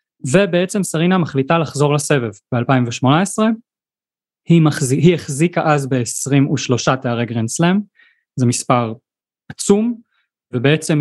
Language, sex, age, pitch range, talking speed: Hebrew, male, 20-39, 125-155 Hz, 100 wpm